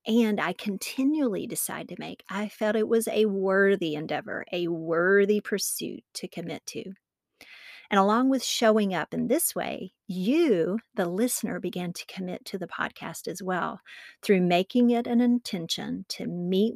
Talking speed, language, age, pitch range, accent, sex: 160 wpm, English, 40-59, 190-235 Hz, American, female